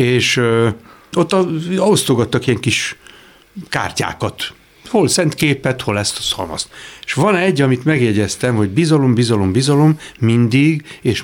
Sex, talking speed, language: male, 135 wpm, Hungarian